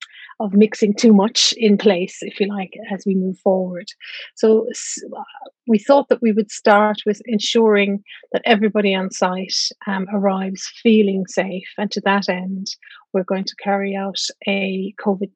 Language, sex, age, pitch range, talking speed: English, female, 30-49, 190-220 Hz, 165 wpm